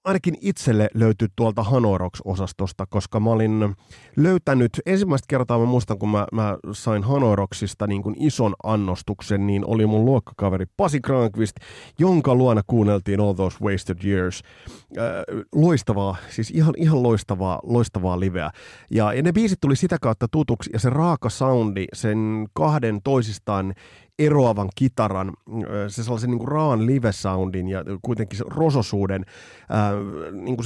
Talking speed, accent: 145 wpm, native